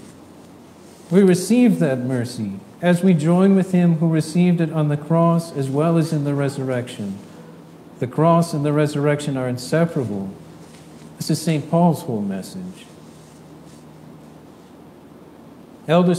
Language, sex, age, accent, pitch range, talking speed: English, male, 50-69, American, 135-170 Hz, 130 wpm